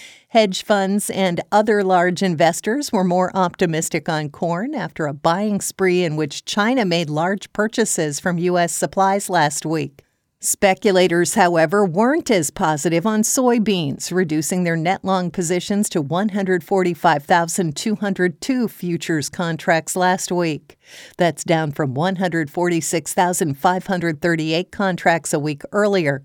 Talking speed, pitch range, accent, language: 120 wpm, 170-210 Hz, American, English